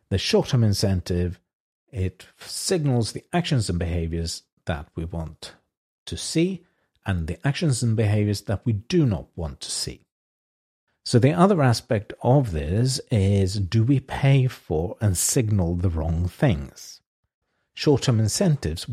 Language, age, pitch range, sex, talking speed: English, 50-69, 95-125 Hz, male, 140 wpm